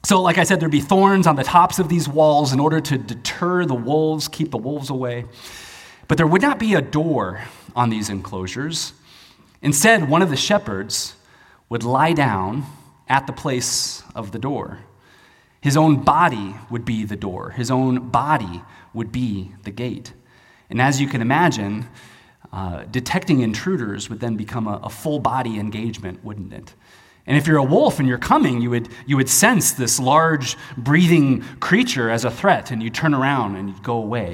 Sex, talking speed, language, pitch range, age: male, 185 wpm, English, 110-145 Hz, 30-49